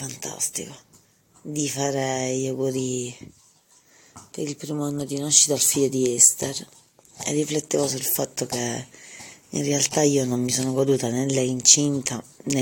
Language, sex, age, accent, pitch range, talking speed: Italian, female, 30-49, native, 125-155 Hz, 145 wpm